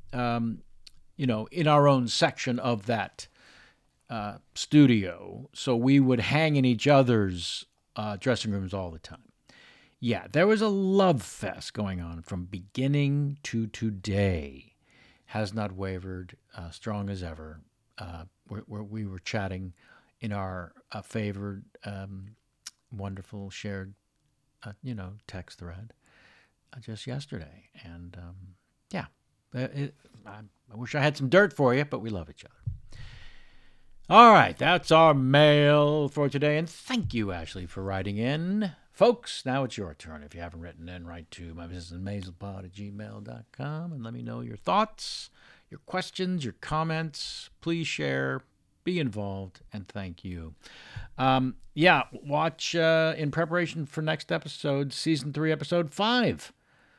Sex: male